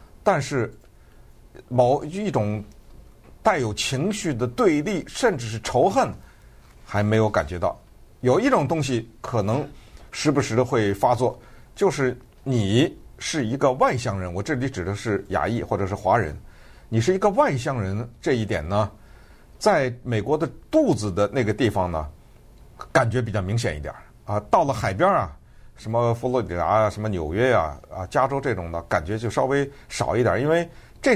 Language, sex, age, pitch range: Chinese, male, 50-69, 105-155 Hz